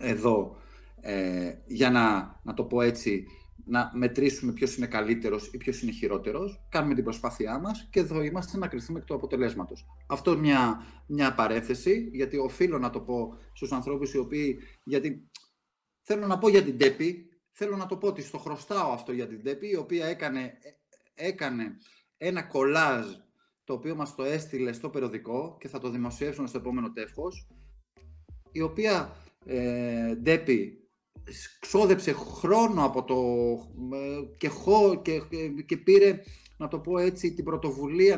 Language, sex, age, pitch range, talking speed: Greek, male, 30-49, 120-175 Hz, 150 wpm